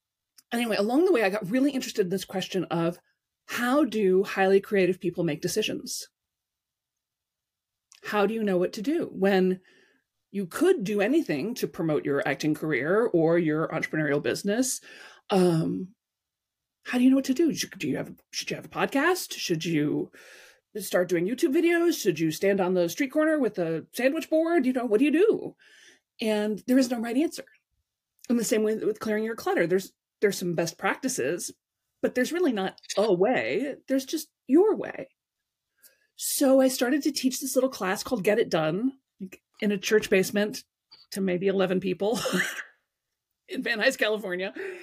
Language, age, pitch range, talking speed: English, 30-49, 185-275 Hz, 175 wpm